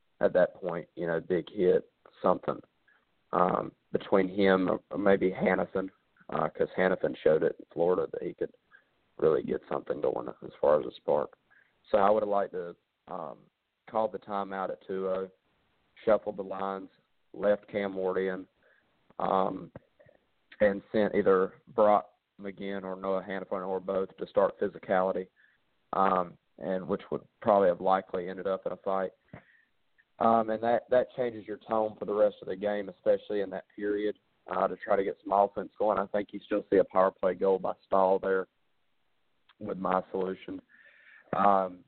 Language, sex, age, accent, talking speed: English, male, 40-59, American, 170 wpm